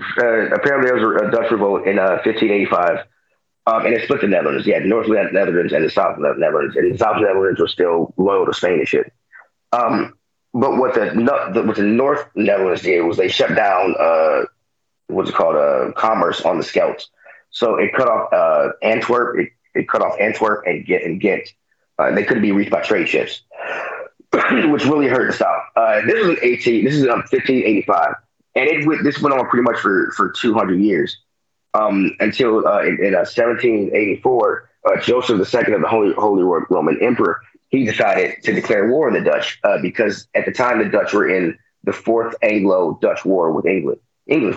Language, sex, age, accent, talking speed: English, male, 30-49, American, 205 wpm